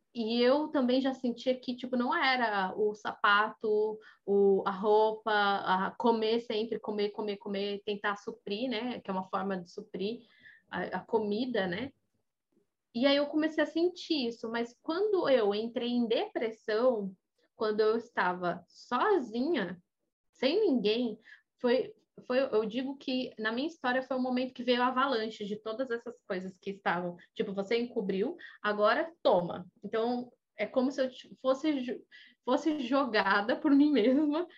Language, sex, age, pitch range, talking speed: Portuguese, female, 20-39, 210-270 Hz, 155 wpm